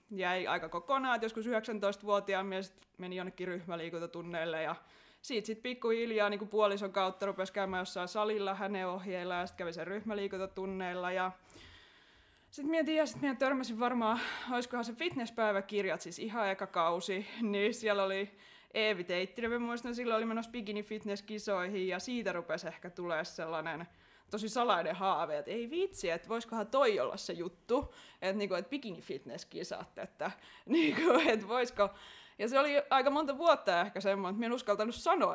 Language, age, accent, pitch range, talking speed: Finnish, 20-39, native, 180-230 Hz, 160 wpm